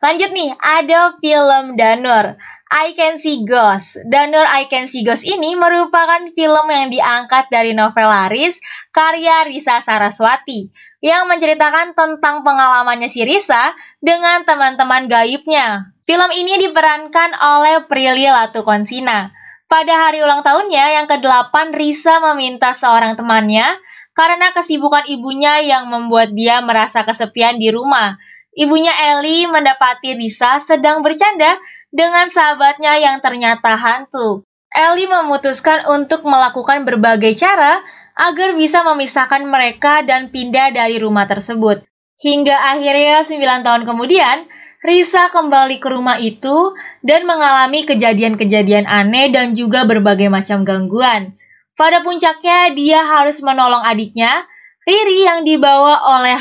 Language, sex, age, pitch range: Indonesian, female, 20-39, 235-315 Hz